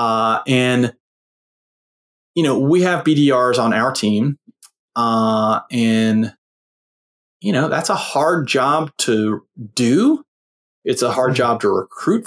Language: English